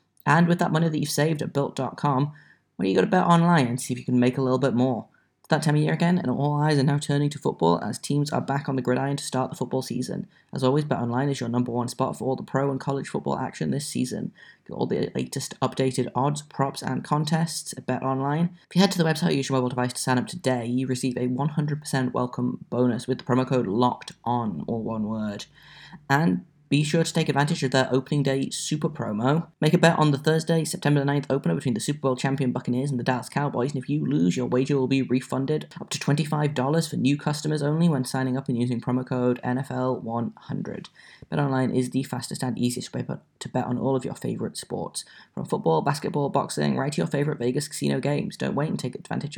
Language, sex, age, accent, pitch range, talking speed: English, male, 10-29, British, 125-150 Hz, 240 wpm